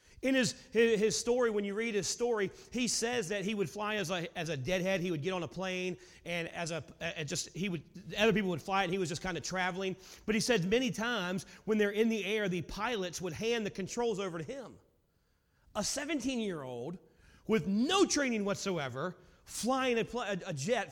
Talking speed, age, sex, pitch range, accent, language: 205 wpm, 30-49, male, 185-235 Hz, American, English